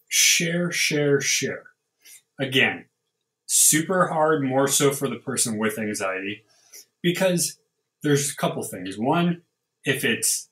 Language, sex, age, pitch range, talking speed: English, male, 20-39, 115-155 Hz, 120 wpm